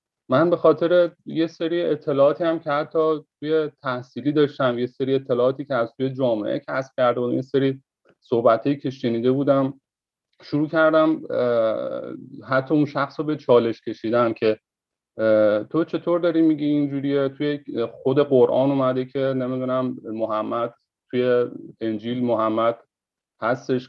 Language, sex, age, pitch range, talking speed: Persian, male, 30-49, 125-155 Hz, 135 wpm